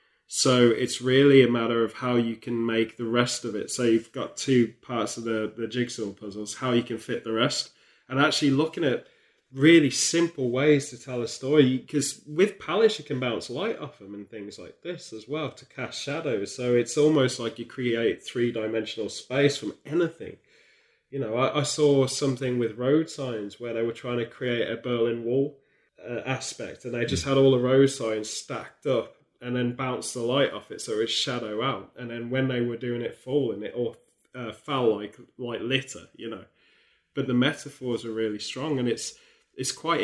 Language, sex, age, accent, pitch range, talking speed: English, male, 20-39, British, 120-145 Hz, 205 wpm